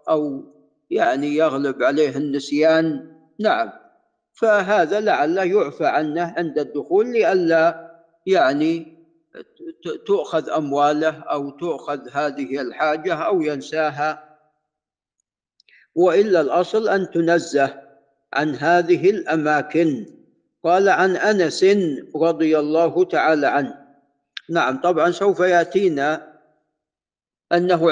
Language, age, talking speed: Arabic, 50-69, 90 wpm